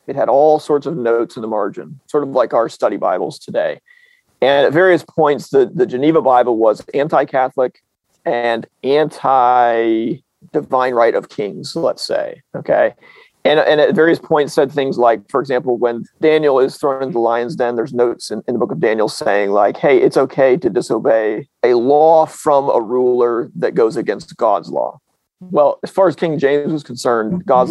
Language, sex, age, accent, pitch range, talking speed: English, male, 40-59, American, 125-170 Hz, 185 wpm